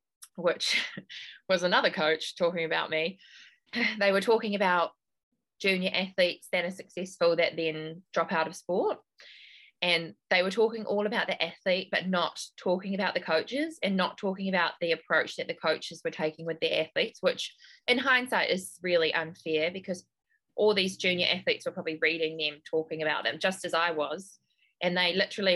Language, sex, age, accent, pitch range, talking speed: English, female, 20-39, Australian, 160-190 Hz, 175 wpm